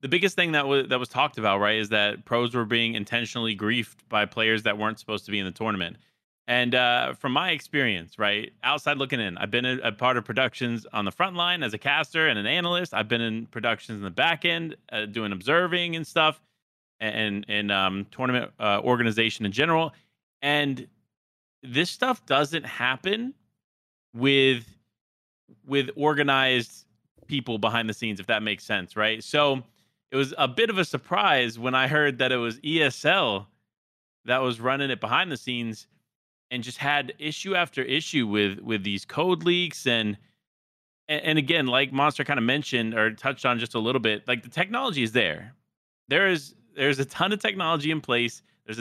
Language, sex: English, male